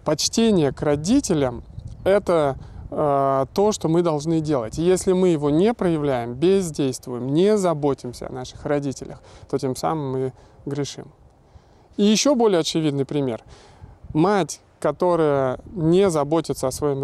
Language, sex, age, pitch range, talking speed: Russian, male, 20-39, 135-185 Hz, 135 wpm